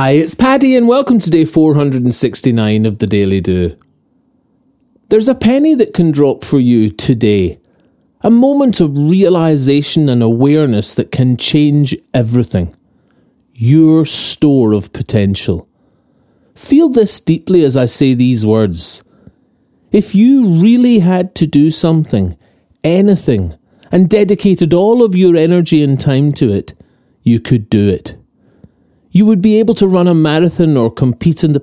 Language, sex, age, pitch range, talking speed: English, male, 30-49, 125-185 Hz, 145 wpm